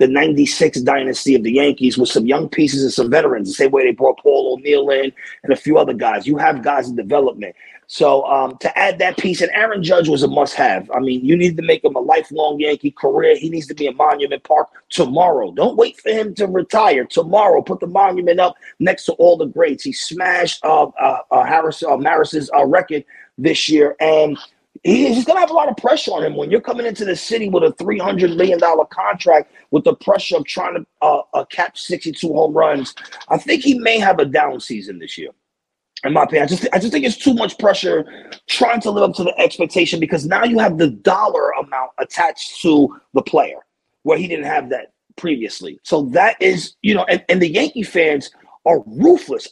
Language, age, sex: English, 30-49, male